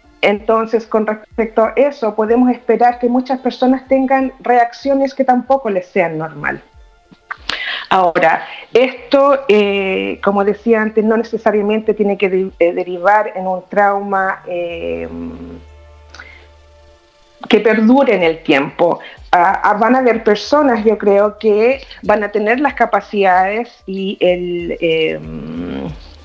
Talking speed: 130 wpm